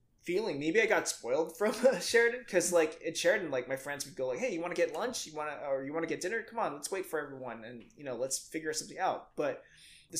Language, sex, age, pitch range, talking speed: English, male, 20-39, 135-175 Hz, 275 wpm